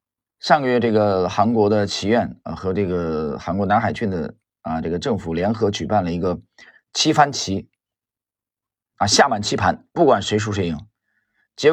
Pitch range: 100-140 Hz